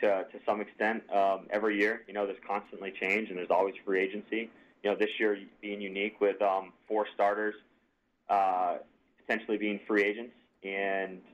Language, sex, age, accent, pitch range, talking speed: English, male, 20-39, American, 100-110 Hz, 175 wpm